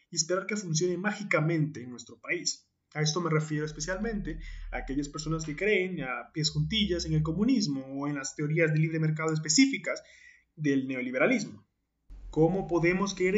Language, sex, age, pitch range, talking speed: Spanish, male, 20-39, 155-205 Hz, 165 wpm